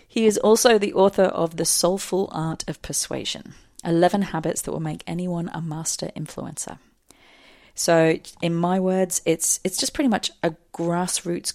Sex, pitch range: female, 160-190 Hz